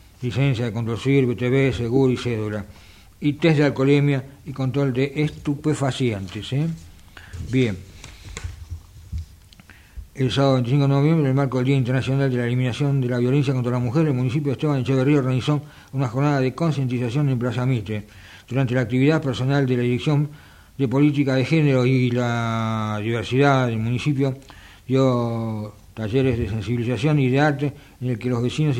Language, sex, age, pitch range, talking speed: Italian, male, 60-79, 110-140 Hz, 165 wpm